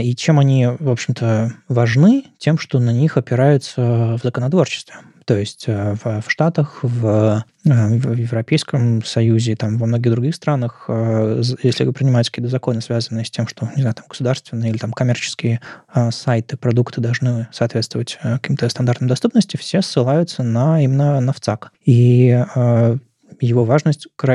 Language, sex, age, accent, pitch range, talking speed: Russian, male, 20-39, native, 120-145 Hz, 140 wpm